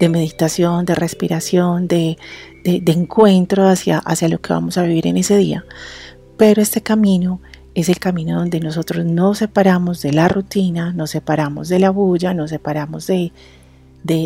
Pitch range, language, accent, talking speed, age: 160-195 Hz, Spanish, Colombian, 170 wpm, 40-59